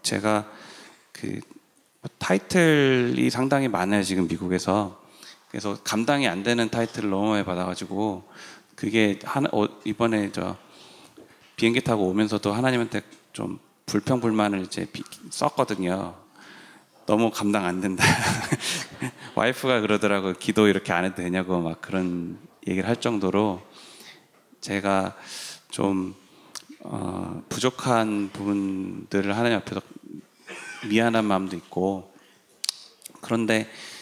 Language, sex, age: Korean, male, 30-49